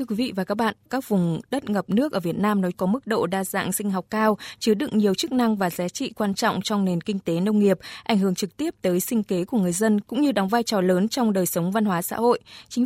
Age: 20-39